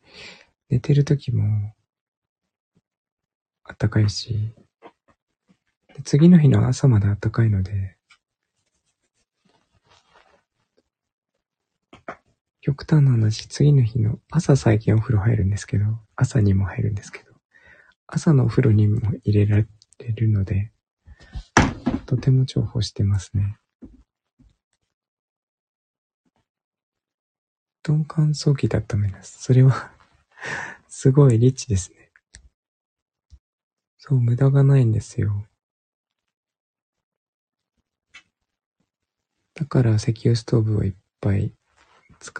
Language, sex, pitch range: Japanese, male, 105-130 Hz